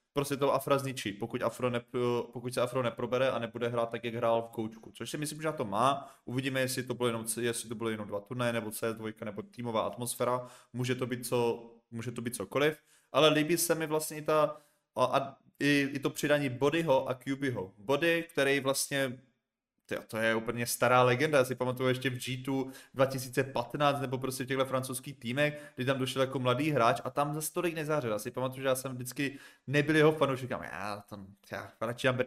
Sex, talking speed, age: male, 195 wpm, 20-39